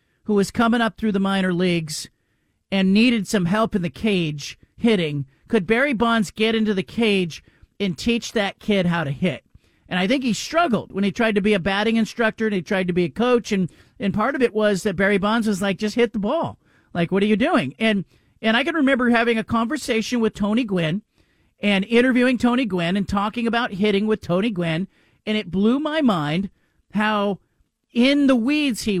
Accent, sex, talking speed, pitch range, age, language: American, male, 210 wpm, 195-240 Hz, 40-59, English